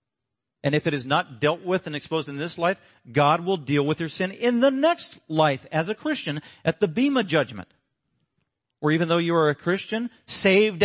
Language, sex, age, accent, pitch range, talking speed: English, male, 40-59, American, 130-190 Hz, 205 wpm